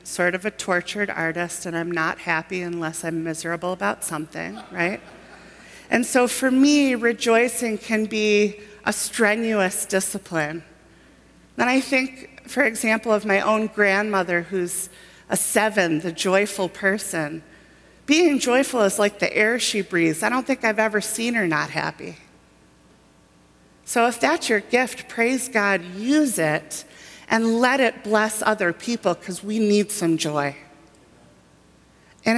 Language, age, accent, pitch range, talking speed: English, 40-59, American, 165-220 Hz, 145 wpm